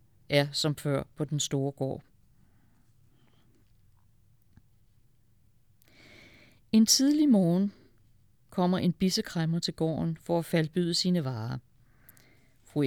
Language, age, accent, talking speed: Danish, 60-79, native, 100 wpm